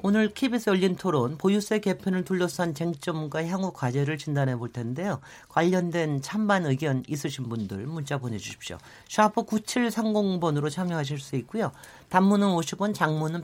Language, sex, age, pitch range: Korean, male, 40-59, 140-190 Hz